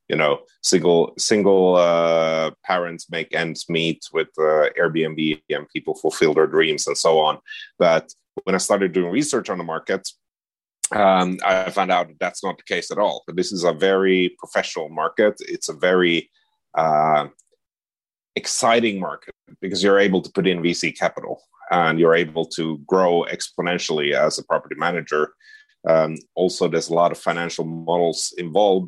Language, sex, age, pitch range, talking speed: English, male, 30-49, 80-100 Hz, 165 wpm